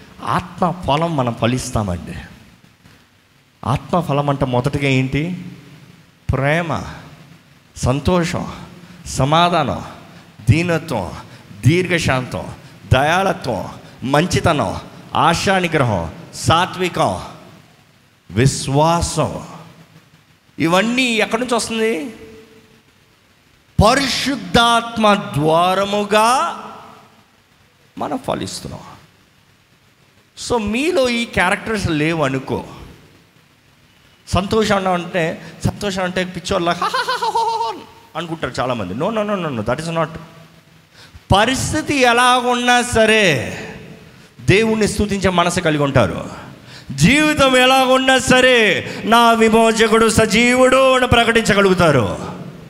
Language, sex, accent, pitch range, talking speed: Telugu, male, native, 140-225 Hz, 70 wpm